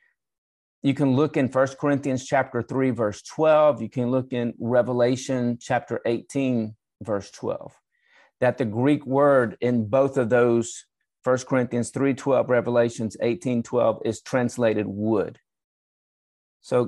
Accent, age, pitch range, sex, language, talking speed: American, 40-59, 115-145 Hz, male, English, 135 wpm